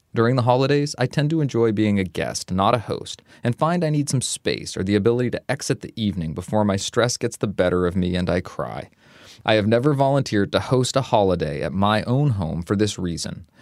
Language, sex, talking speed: English, male, 230 wpm